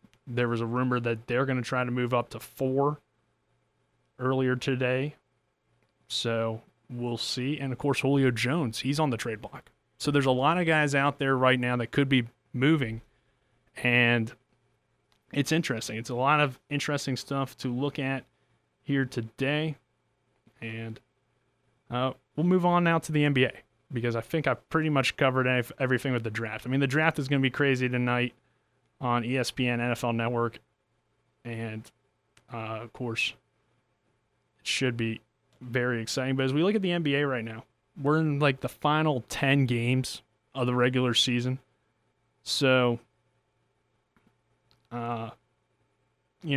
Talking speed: 160 wpm